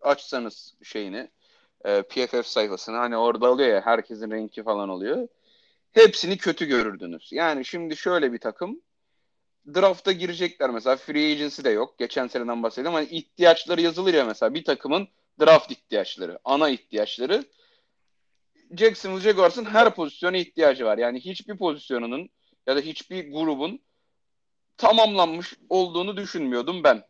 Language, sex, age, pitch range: Turkish, male, 40-59, 130-225 Hz